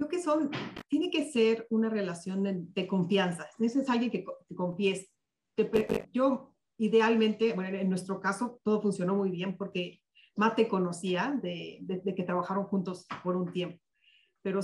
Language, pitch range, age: Spanish, 190-225 Hz, 40-59